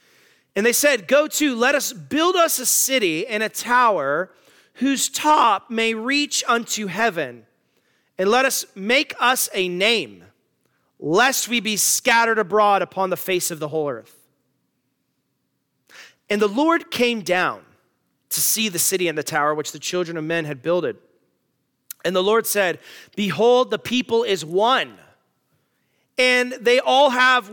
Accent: American